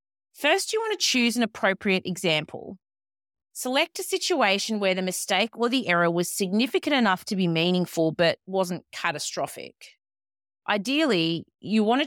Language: English